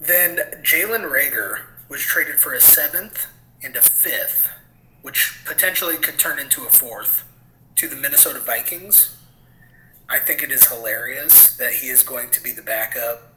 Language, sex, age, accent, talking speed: English, male, 30-49, American, 155 wpm